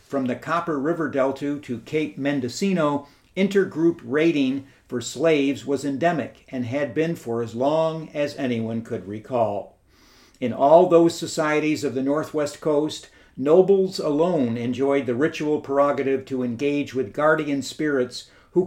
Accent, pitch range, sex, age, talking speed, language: American, 125-155 Hz, male, 60-79, 140 wpm, English